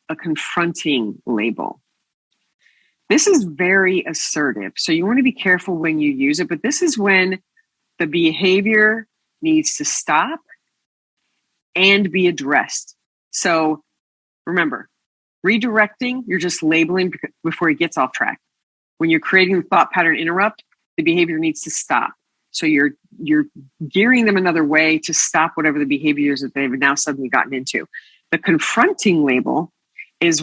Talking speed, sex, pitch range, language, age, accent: 145 wpm, female, 155-210 Hz, English, 40-59, American